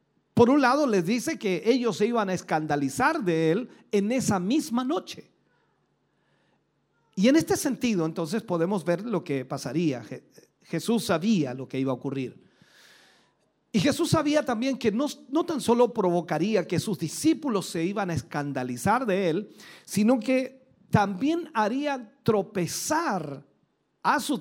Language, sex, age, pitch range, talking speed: Spanish, male, 40-59, 160-235 Hz, 150 wpm